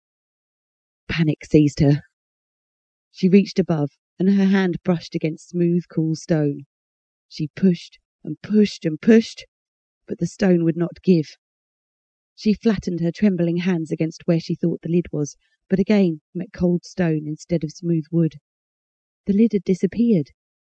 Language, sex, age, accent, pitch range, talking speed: English, female, 40-59, British, 155-190 Hz, 145 wpm